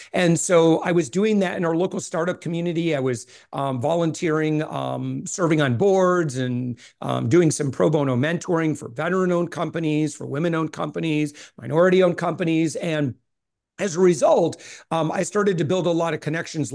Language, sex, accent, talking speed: English, male, American, 180 wpm